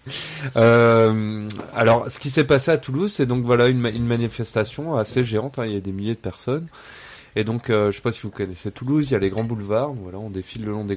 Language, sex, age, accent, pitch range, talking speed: French, male, 20-39, French, 100-125 Hz, 255 wpm